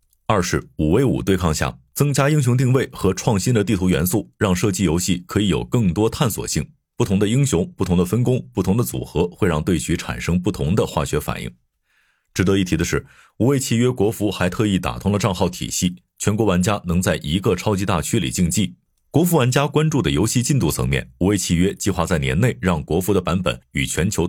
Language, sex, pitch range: Chinese, male, 80-115 Hz